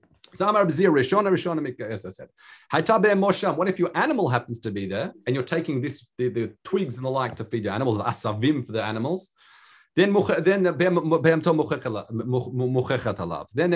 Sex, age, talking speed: male, 40-59, 135 wpm